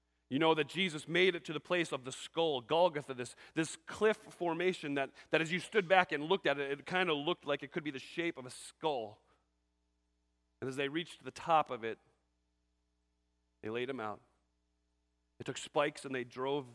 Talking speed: 210 wpm